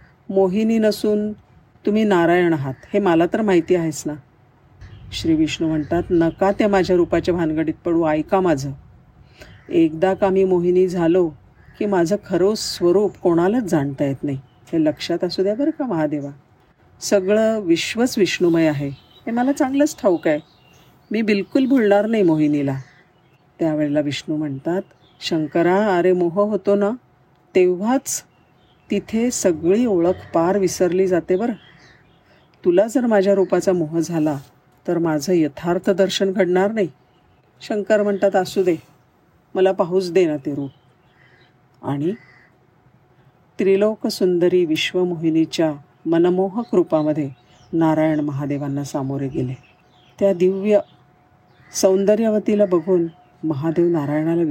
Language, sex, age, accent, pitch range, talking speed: Marathi, female, 50-69, native, 150-195 Hz, 120 wpm